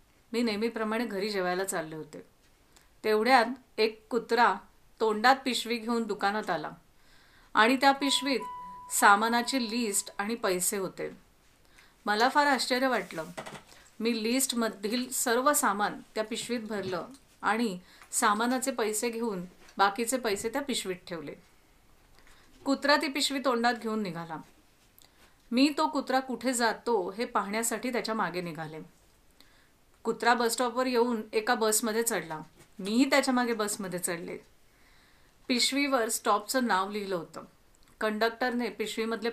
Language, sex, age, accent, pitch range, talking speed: Marathi, female, 40-59, native, 200-245 Hz, 115 wpm